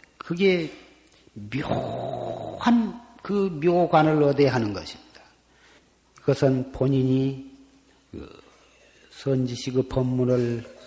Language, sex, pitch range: Korean, male, 125-155 Hz